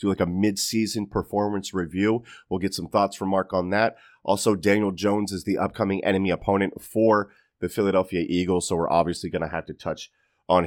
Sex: male